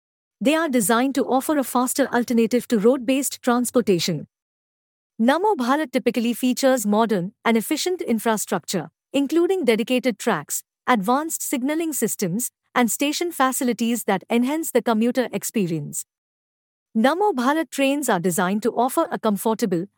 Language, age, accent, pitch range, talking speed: English, 50-69, Indian, 205-275 Hz, 120 wpm